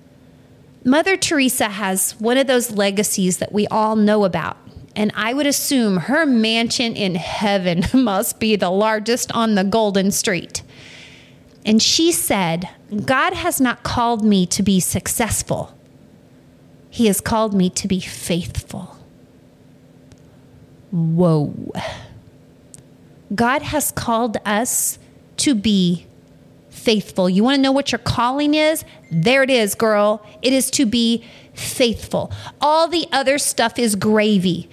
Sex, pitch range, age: female, 195-260 Hz, 30-49